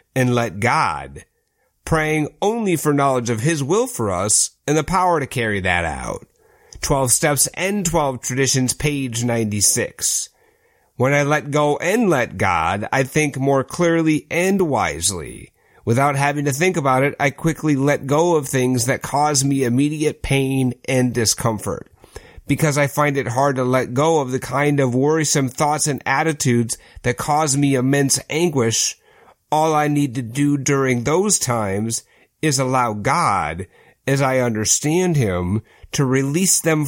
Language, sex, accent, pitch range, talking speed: English, male, American, 120-150 Hz, 160 wpm